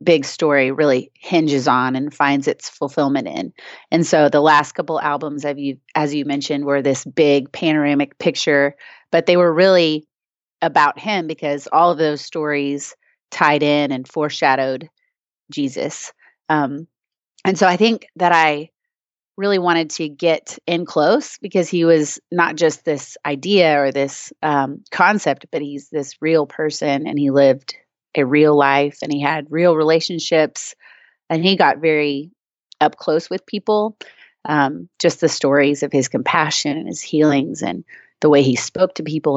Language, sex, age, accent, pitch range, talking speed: English, female, 30-49, American, 145-170 Hz, 160 wpm